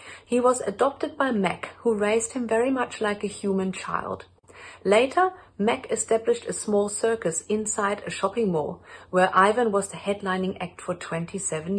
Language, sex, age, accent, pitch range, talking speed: English, female, 40-59, German, 180-225 Hz, 165 wpm